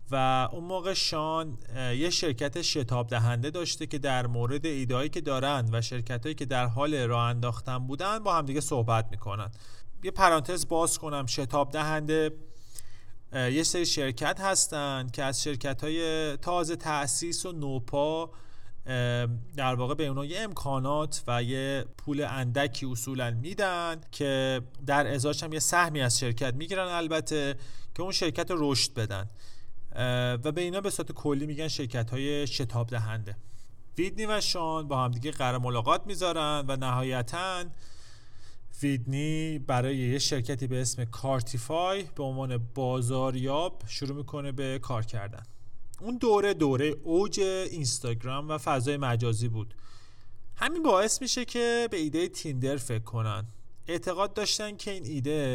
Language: Persian